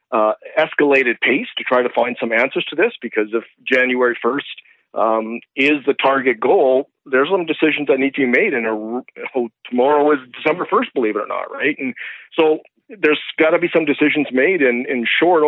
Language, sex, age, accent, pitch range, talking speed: English, male, 40-59, American, 125-150 Hz, 200 wpm